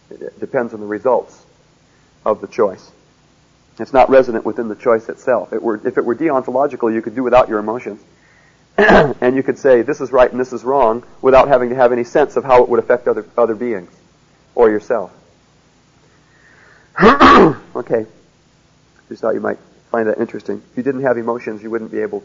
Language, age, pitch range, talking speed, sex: English, 40-59, 120-155 Hz, 190 wpm, male